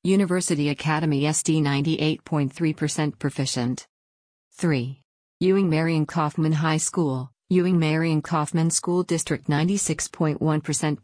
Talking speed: 90 wpm